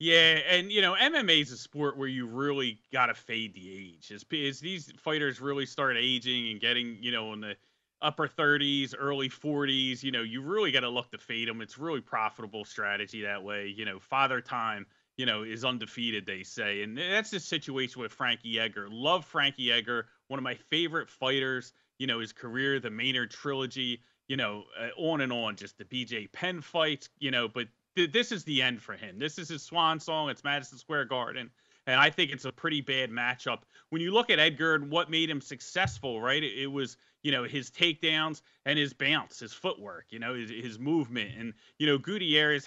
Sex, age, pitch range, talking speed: male, 30-49, 120-150 Hz, 210 wpm